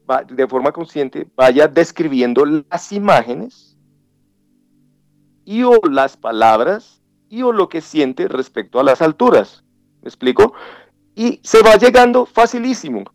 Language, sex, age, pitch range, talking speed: Spanish, male, 40-59, 135-195 Hz, 125 wpm